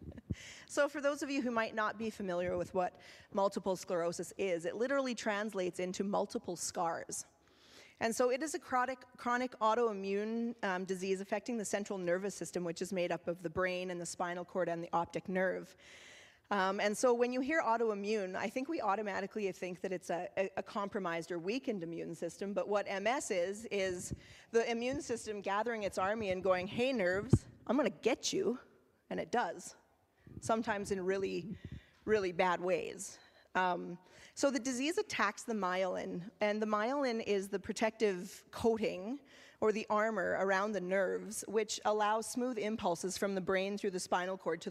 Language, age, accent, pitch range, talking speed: English, 30-49, American, 185-225 Hz, 180 wpm